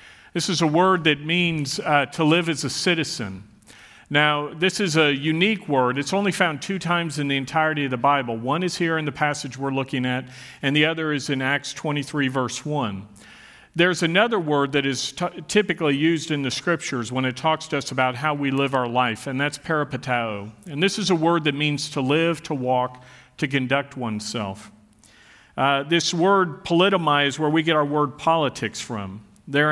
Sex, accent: male, American